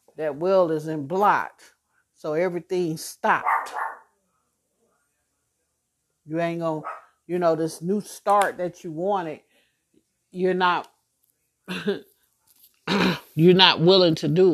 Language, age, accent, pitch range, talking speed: English, 50-69, American, 155-185 Hz, 105 wpm